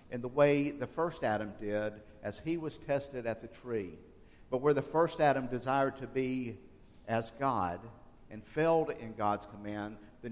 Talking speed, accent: 175 wpm, American